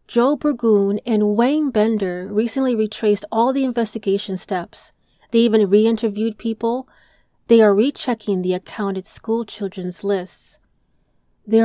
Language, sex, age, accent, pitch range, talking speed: English, female, 30-49, American, 200-245 Hz, 135 wpm